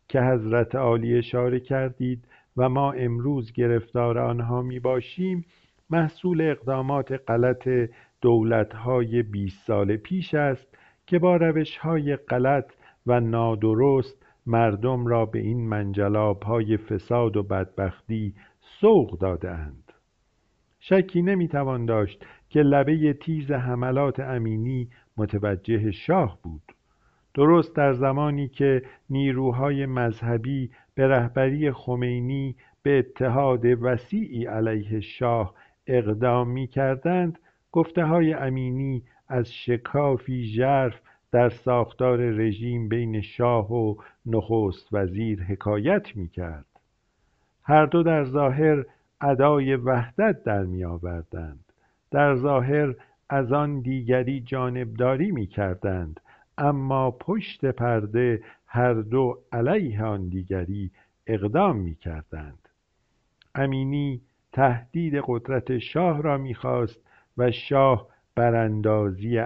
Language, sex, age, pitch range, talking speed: Persian, male, 50-69, 110-140 Hz, 100 wpm